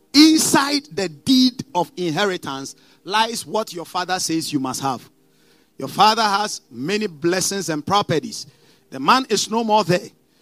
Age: 50-69